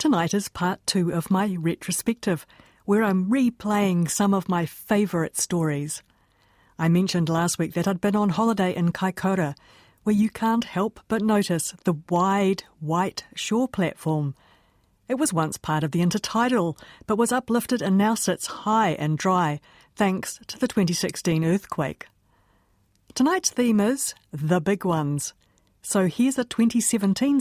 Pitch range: 155-200 Hz